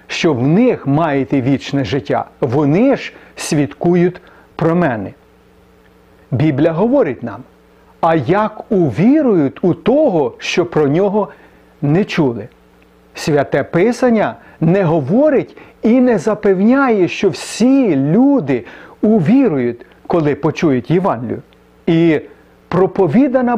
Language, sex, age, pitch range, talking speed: Ukrainian, male, 40-59, 140-210 Hz, 100 wpm